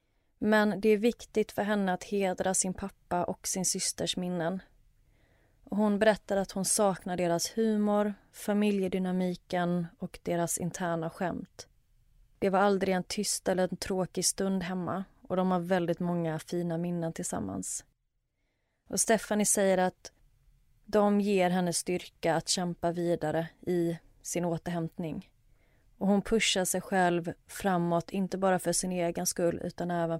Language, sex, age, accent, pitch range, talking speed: Swedish, female, 30-49, native, 170-190 Hz, 145 wpm